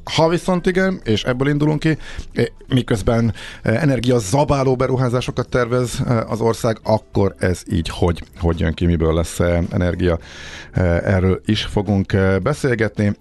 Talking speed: 125 wpm